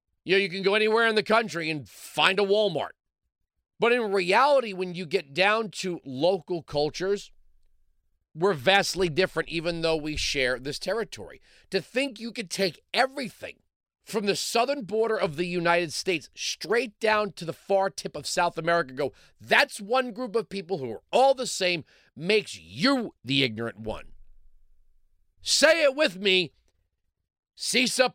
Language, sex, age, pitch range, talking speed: English, male, 40-59, 125-200 Hz, 160 wpm